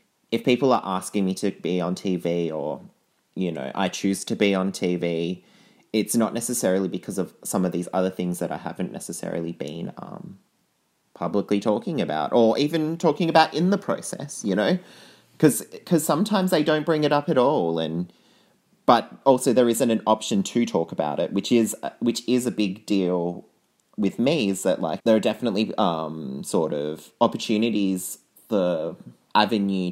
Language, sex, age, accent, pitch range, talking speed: English, male, 30-49, Australian, 90-115 Hz, 175 wpm